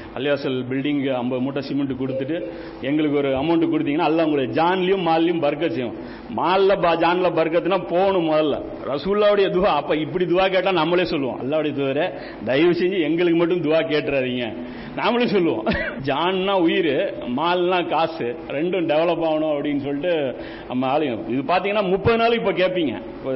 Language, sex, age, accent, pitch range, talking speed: Tamil, male, 60-79, native, 145-185 Hz, 145 wpm